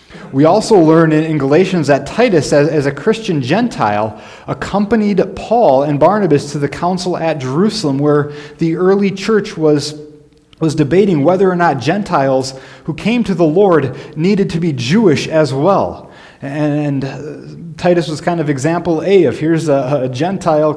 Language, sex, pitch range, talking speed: English, male, 145-175 Hz, 150 wpm